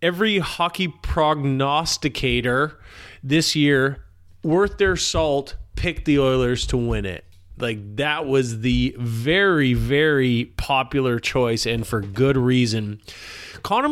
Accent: American